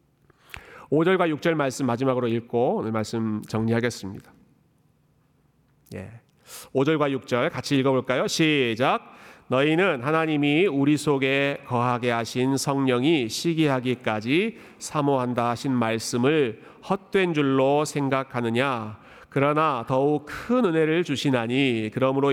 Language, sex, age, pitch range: Korean, male, 40-59, 125-155 Hz